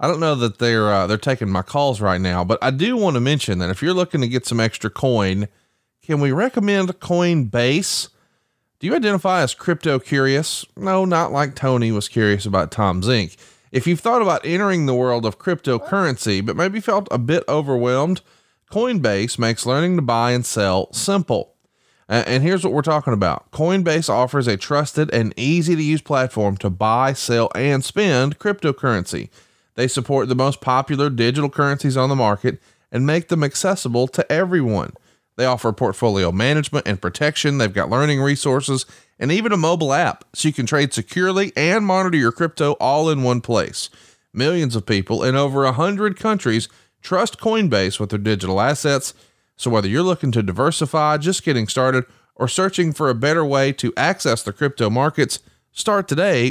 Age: 30-49